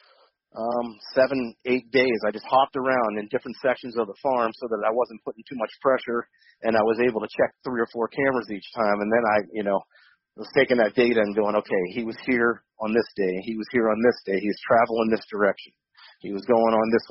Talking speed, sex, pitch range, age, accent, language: 235 wpm, male, 110-125 Hz, 40-59, American, English